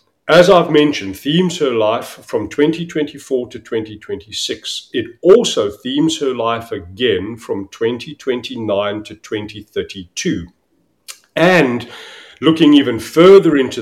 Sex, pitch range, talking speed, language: male, 110-160 Hz, 110 wpm, English